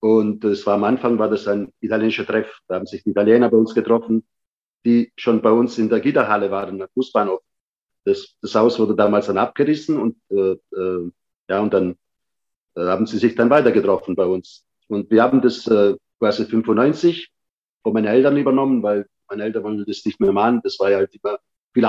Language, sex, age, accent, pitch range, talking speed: German, male, 50-69, German, 105-130 Hz, 205 wpm